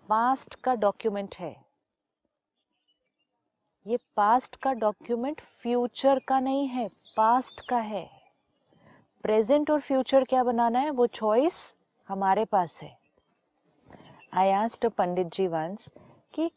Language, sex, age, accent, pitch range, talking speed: Hindi, female, 40-59, native, 180-245 Hz, 110 wpm